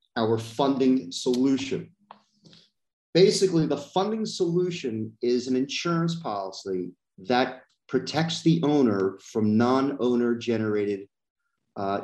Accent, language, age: American, English, 40-59